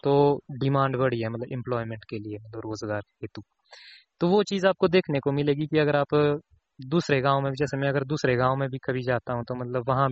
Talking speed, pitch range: 220 wpm, 120-145 Hz